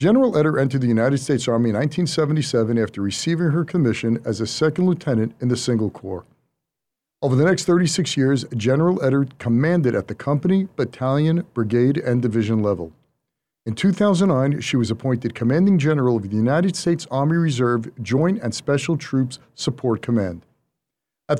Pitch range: 115-170 Hz